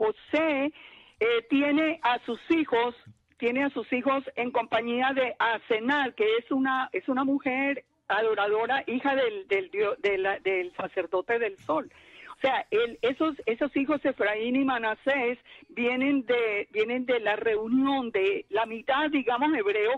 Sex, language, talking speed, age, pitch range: female, English, 150 wpm, 50-69, 220-295 Hz